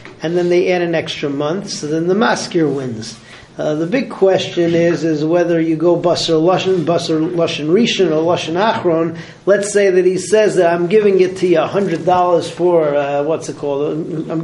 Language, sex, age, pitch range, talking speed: English, male, 40-59, 155-185 Hz, 195 wpm